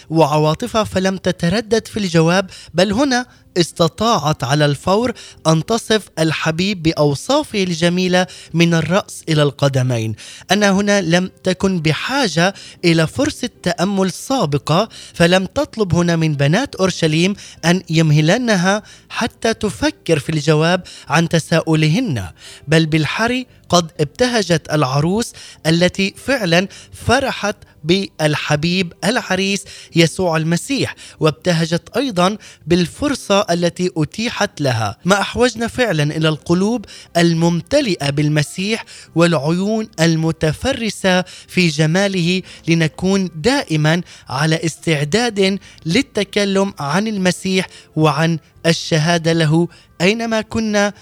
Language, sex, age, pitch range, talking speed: Arabic, male, 20-39, 155-200 Hz, 100 wpm